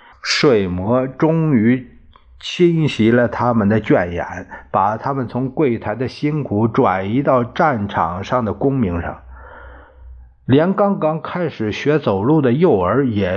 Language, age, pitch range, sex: Chinese, 50-69, 100-145 Hz, male